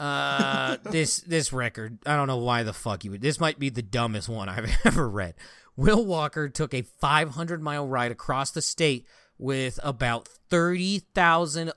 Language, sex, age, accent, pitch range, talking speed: English, male, 30-49, American, 120-160 Hz, 175 wpm